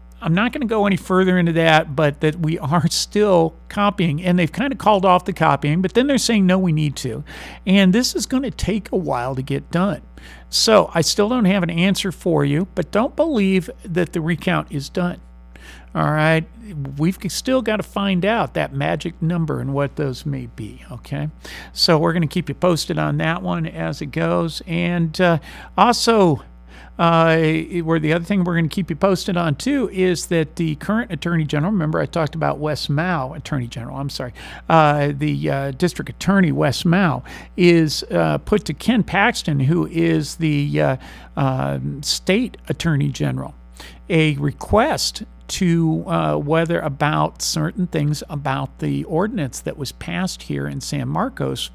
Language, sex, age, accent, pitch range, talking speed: English, male, 50-69, American, 145-185 Hz, 185 wpm